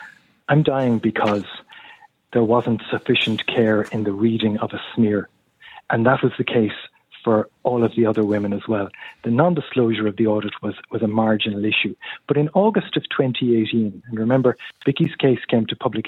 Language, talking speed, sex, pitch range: English, 180 wpm, male, 105-130 Hz